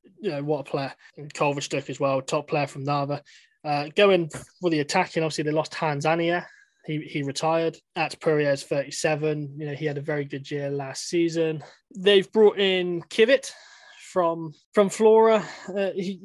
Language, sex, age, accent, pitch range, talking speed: English, male, 20-39, British, 145-180 Hz, 175 wpm